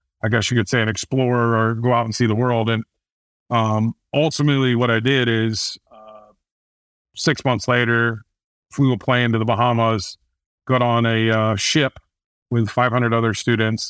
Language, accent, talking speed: English, American, 175 wpm